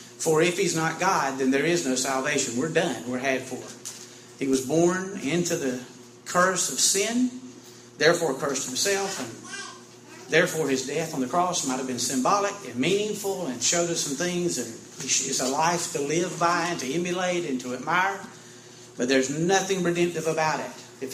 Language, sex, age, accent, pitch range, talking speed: English, male, 40-59, American, 125-180 Hz, 180 wpm